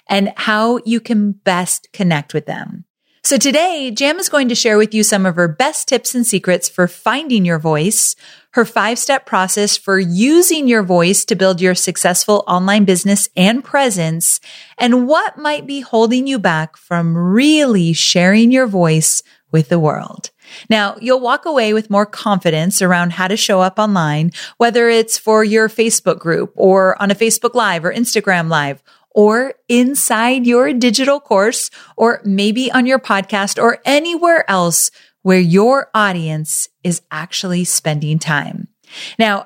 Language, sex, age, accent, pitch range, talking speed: English, female, 30-49, American, 180-240 Hz, 160 wpm